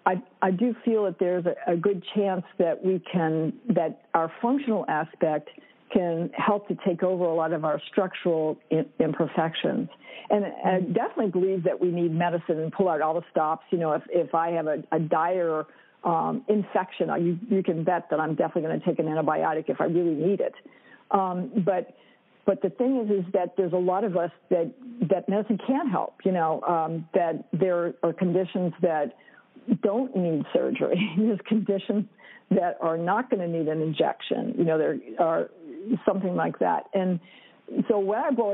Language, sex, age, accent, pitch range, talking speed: English, female, 50-69, American, 170-205 Hz, 190 wpm